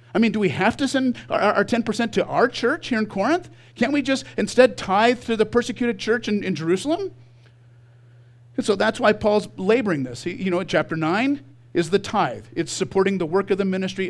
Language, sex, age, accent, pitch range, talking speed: English, male, 50-69, American, 145-215 Hz, 205 wpm